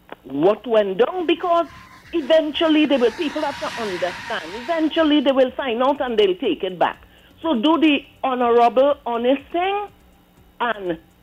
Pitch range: 240-310 Hz